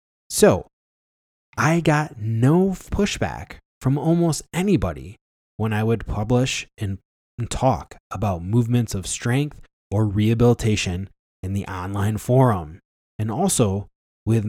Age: 20-39